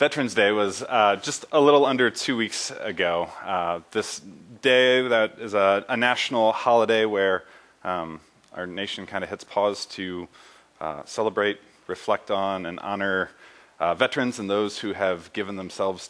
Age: 30-49